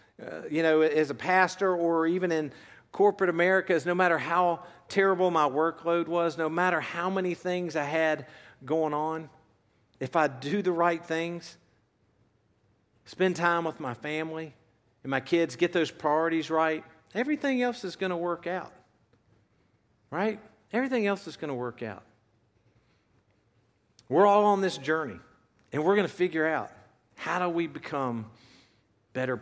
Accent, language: American, English